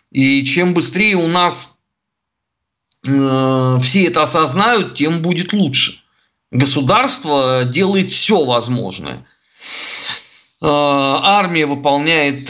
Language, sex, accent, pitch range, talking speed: Russian, male, native, 125-170 Hz, 90 wpm